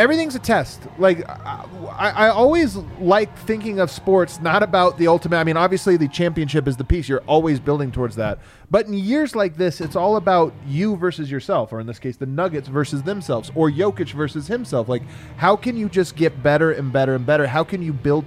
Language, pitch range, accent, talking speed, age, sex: English, 140-190 Hz, American, 215 wpm, 30-49, male